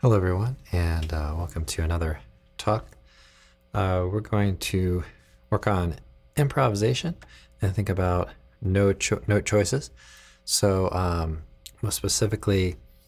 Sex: male